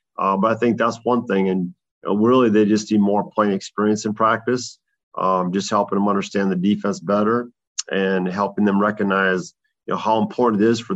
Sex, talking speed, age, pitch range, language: male, 205 wpm, 30-49, 100-115 Hz, English